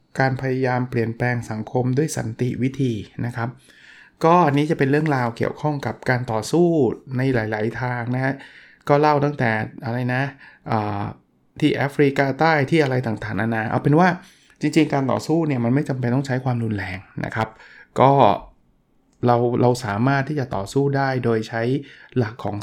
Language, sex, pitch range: Thai, male, 115-140 Hz